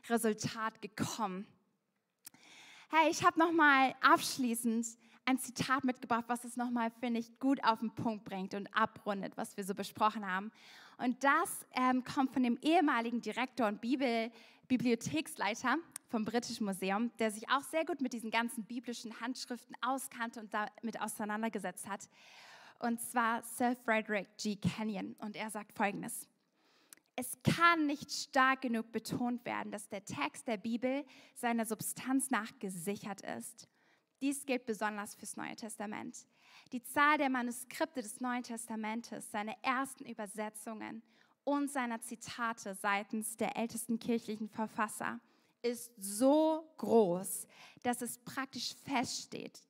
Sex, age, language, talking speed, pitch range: female, 10-29, German, 140 wpm, 215-255 Hz